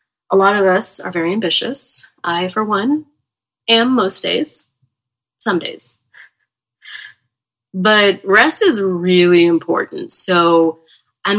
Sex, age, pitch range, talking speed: female, 20-39, 165-200 Hz, 115 wpm